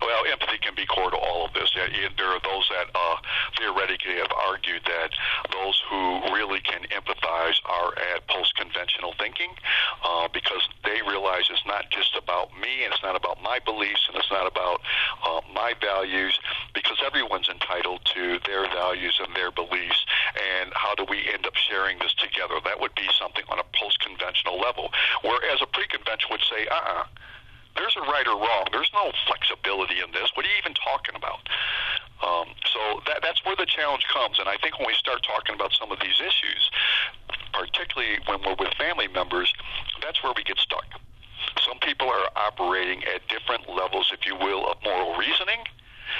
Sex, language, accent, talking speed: male, English, American, 185 wpm